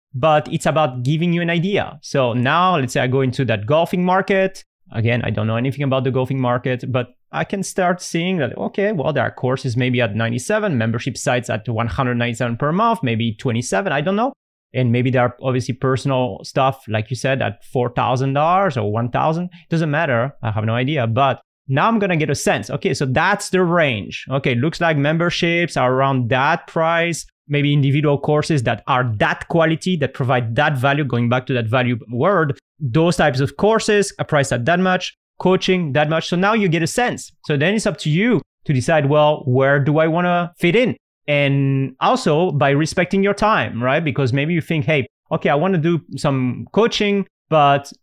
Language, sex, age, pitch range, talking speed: English, male, 30-49, 130-175 Hz, 205 wpm